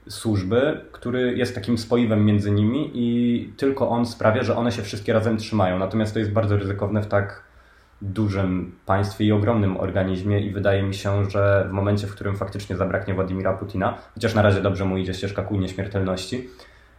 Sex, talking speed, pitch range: male, 180 wpm, 100-110 Hz